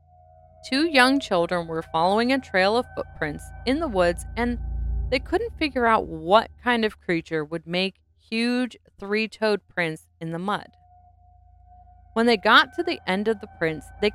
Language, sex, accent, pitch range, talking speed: English, female, American, 170-250 Hz, 165 wpm